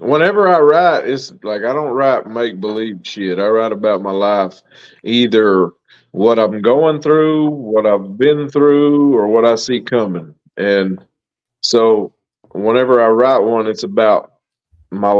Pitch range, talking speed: 105-145 Hz, 150 wpm